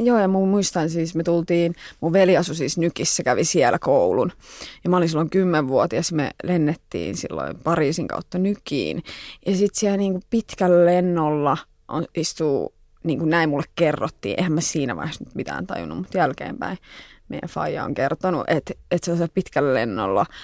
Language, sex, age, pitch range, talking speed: English, female, 20-39, 155-180 Hz, 155 wpm